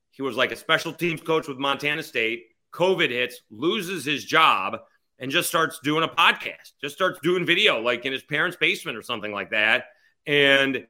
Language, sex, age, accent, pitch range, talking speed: English, male, 40-59, American, 125-160 Hz, 195 wpm